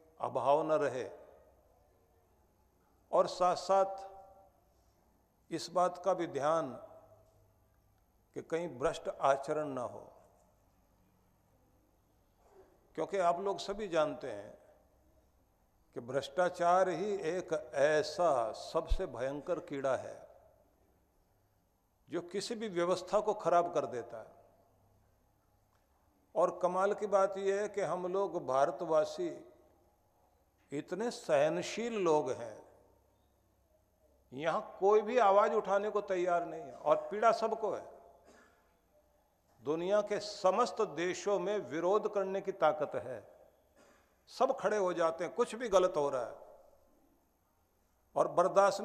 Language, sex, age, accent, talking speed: Hindi, male, 50-69, native, 110 wpm